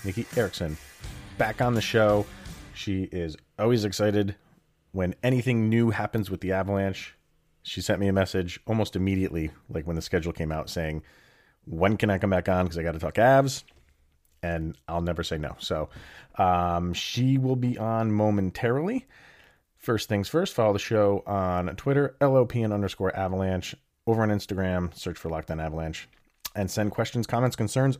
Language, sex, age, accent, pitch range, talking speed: English, male, 30-49, American, 85-110 Hz, 175 wpm